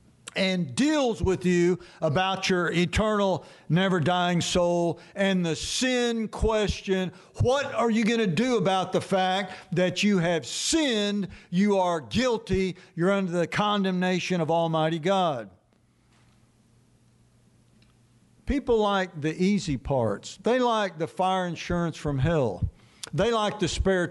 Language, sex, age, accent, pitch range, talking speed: English, male, 60-79, American, 155-195 Hz, 130 wpm